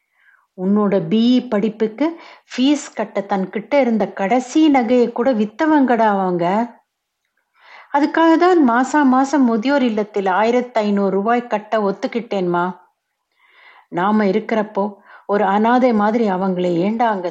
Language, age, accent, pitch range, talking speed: Tamil, 60-79, native, 185-245 Hz, 110 wpm